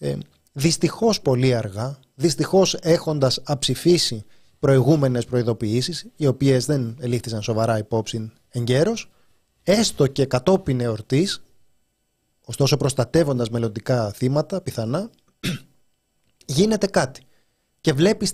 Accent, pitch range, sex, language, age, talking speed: native, 120-170 Hz, male, Greek, 30-49, 95 wpm